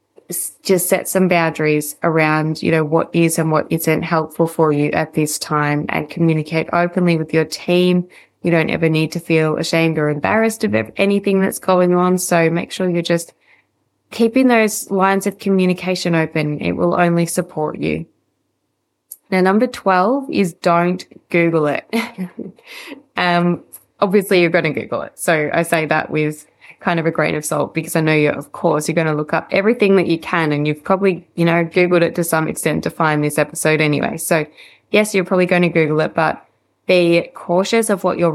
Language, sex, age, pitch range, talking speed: English, female, 20-39, 155-185 Hz, 190 wpm